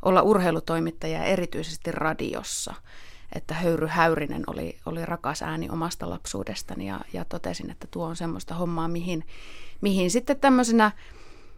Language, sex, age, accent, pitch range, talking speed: Finnish, female, 30-49, native, 160-185 Hz, 130 wpm